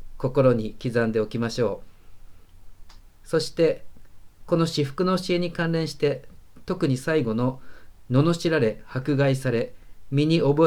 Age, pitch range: 40-59, 115-145 Hz